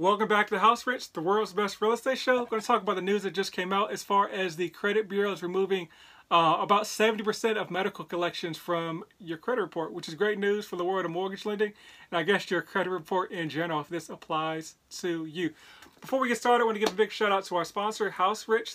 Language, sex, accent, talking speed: English, male, American, 260 wpm